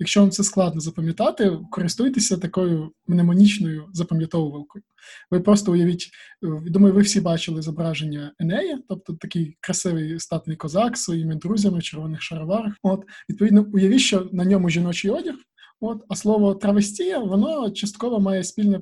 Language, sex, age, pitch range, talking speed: Ukrainian, male, 20-39, 165-205 Hz, 135 wpm